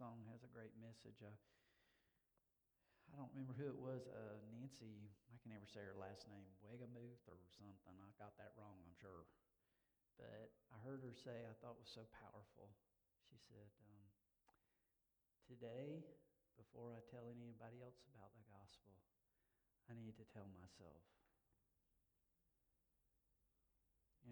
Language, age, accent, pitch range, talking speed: English, 50-69, American, 100-125 Hz, 145 wpm